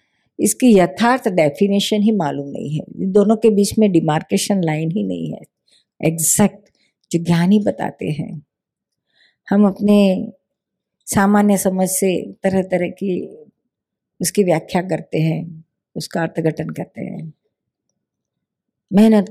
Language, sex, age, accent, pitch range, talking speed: Hindi, female, 50-69, native, 165-205 Hz, 120 wpm